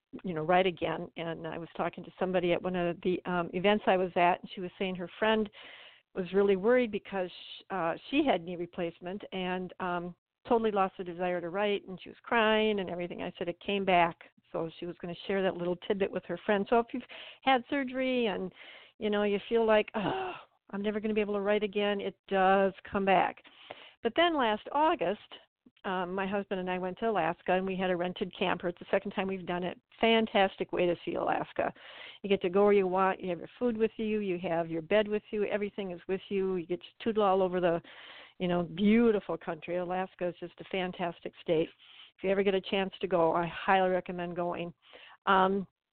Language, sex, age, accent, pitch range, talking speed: English, female, 50-69, American, 175-210 Hz, 225 wpm